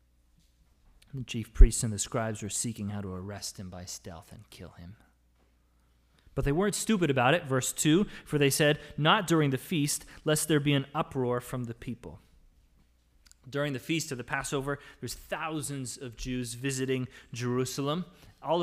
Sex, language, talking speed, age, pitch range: male, English, 170 wpm, 30-49, 95-150 Hz